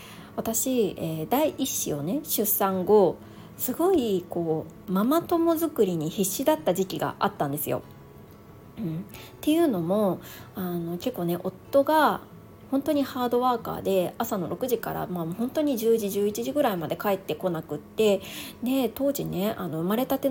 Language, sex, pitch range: Japanese, female, 175-255 Hz